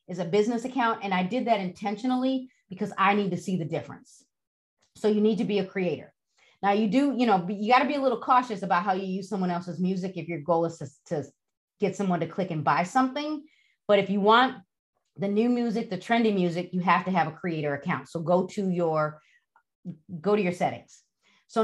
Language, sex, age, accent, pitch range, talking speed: English, female, 30-49, American, 175-225 Hz, 225 wpm